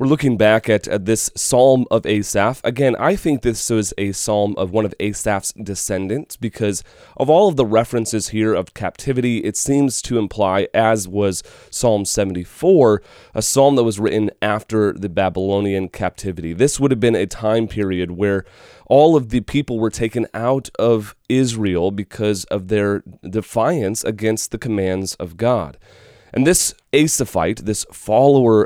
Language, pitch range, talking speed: English, 100-130 Hz, 165 wpm